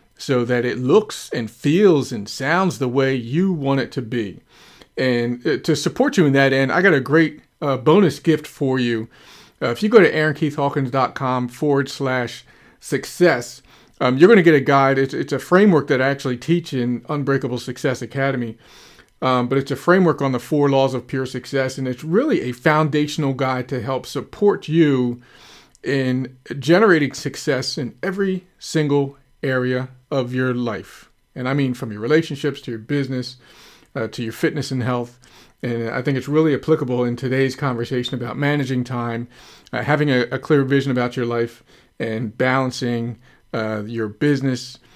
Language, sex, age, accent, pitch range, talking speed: English, male, 40-59, American, 125-145 Hz, 175 wpm